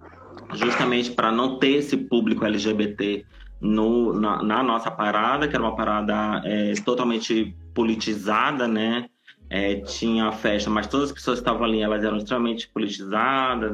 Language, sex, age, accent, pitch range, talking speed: Portuguese, male, 20-39, Brazilian, 105-115 Hz, 150 wpm